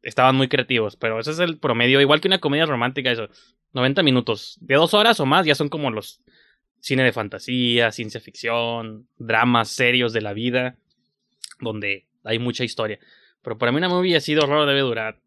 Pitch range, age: 115-150 Hz, 20-39